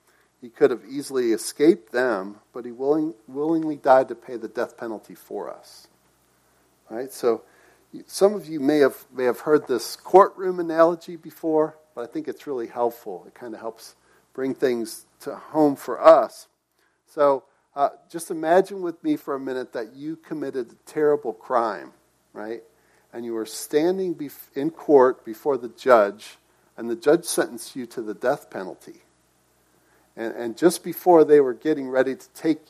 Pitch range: 120-170 Hz